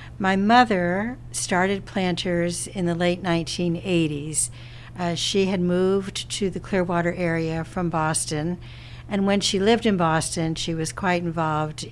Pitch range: 150-175 Hz